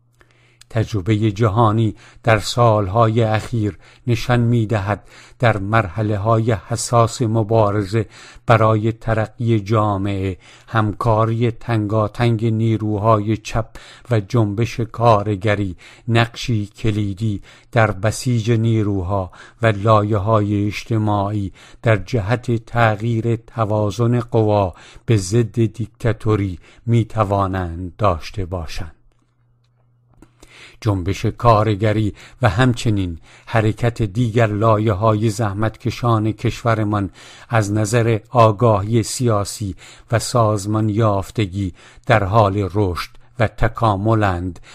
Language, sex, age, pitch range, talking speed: English, male, 50-69, 105-120 Hz, 85 wpm